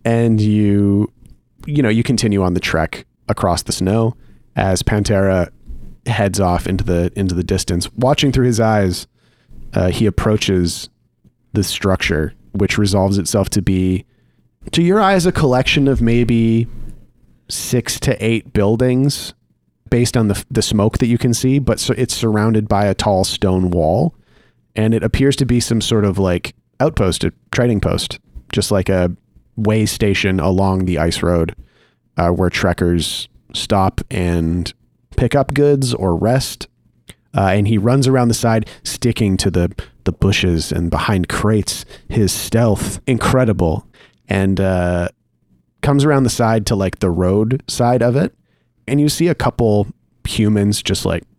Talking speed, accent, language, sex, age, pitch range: 155 wpm, American, English, male, 30-49, 95-115 Hz